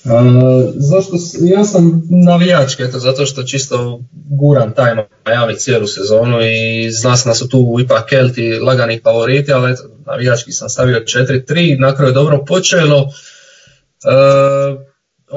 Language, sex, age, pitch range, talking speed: Croatian, male, 20-39, 130-165 Hz, 135 wpm